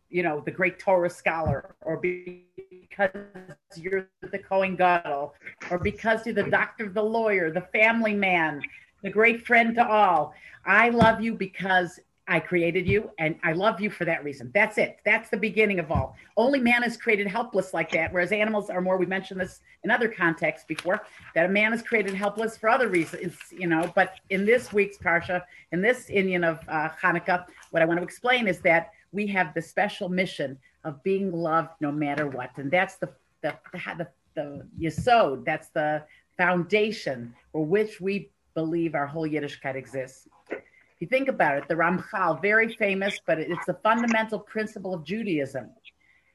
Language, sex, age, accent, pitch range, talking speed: English, female, 50-69, American, 165-215 Hz, 185 wpm